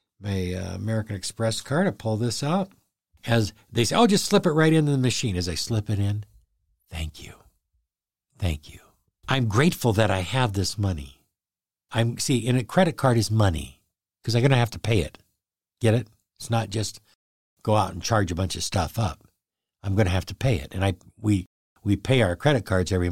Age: 60-79